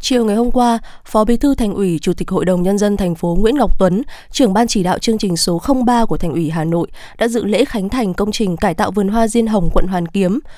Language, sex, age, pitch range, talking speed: Vietnamese, female, 20-39, 190-235 Hz, 280 wpm